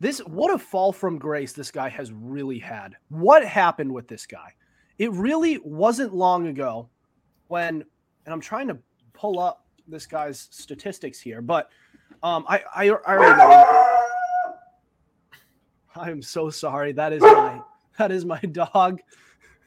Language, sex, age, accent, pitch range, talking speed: English, male, 30-49, American, 145-225 Hz, 155 wpm